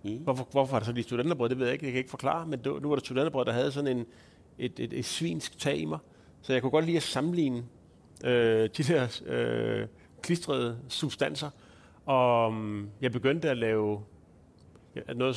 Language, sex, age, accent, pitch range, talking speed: Danish, male, 40-59, native, 115-140 Hz, 185 wpm